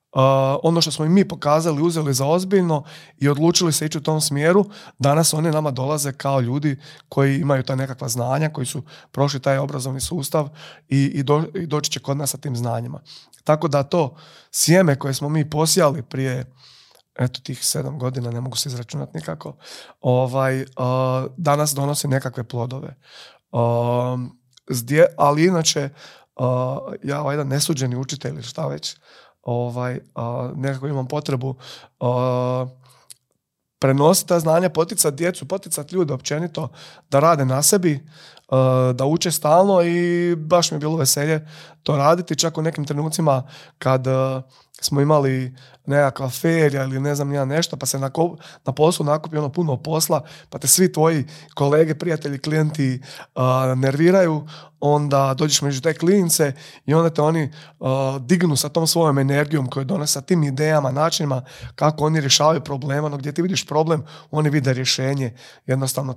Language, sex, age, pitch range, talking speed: Croatian, male, 30-49, 135-160 Hz, 160 wpm